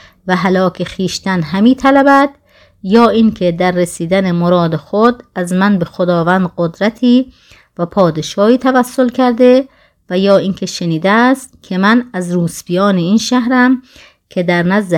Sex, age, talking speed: female, 30-49, 135 wpm